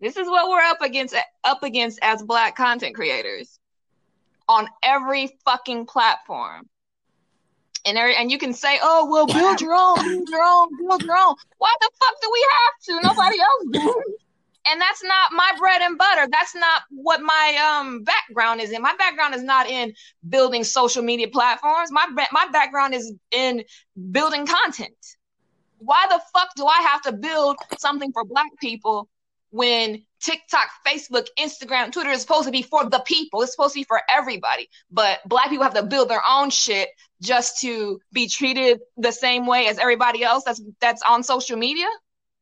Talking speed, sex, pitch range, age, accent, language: 180 wpm, female, 235-315 Hz, 20-39, American, English